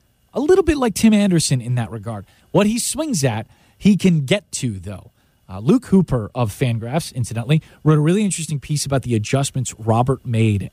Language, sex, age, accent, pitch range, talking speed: English, male, 30-49, American, 115-165 Hz, 190 wpm